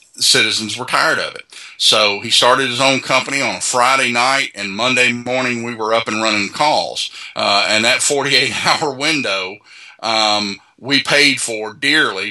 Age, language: 40-59, English